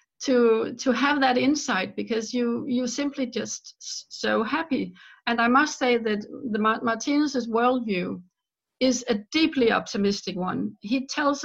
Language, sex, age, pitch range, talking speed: English, female, 60-79, 205-255 Hz, 140 wpm